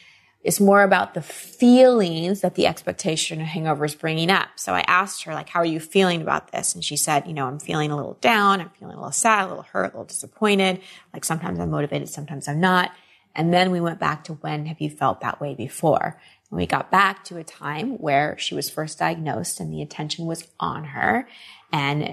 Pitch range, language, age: 160-205 Hz, English, 20-39